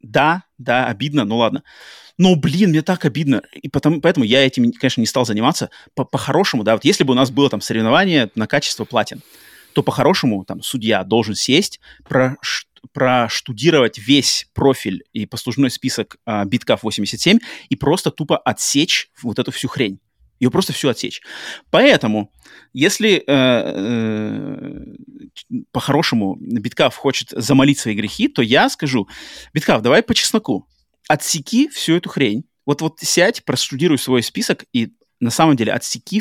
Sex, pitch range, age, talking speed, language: male, 120-150 Hz, 30-49, 150 wpm, Russian